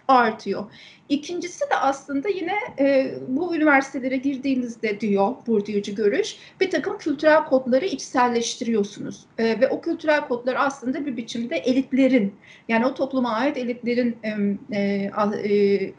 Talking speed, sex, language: 130 wpm, female, Turkish